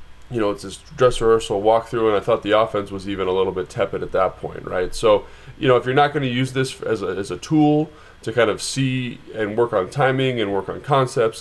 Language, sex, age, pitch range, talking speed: English, male, 20-39, 100-125 Hz, 260 wpm